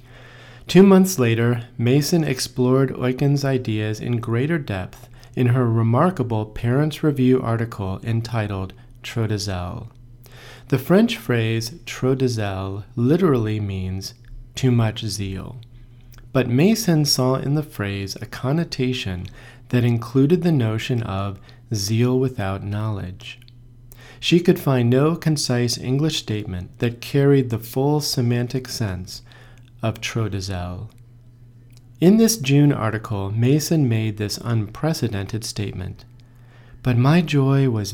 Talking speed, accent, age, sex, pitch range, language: 110 wpm, American, 40-59, male, 115-130 Hz, English